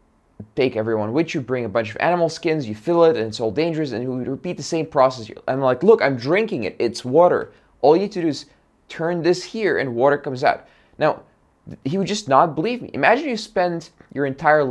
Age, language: 20-39, English